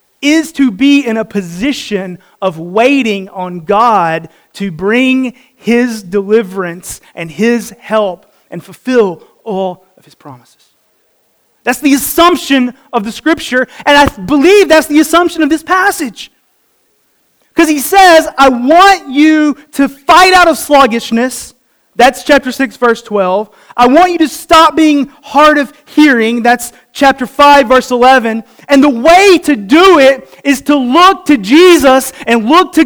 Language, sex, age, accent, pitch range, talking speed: English, male, 30-49, American, 200-295 Hz, 150 wpm